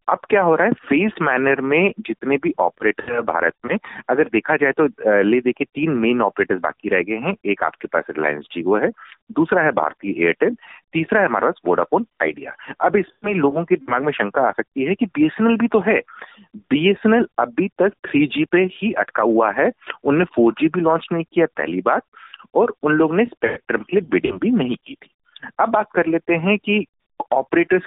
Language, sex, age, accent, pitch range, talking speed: Hindi, male, 40-59, native, 135-210 Hz, 200 wpm